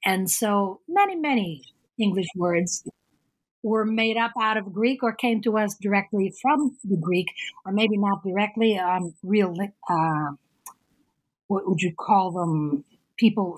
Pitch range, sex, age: 180-230 Hz, female, 50-69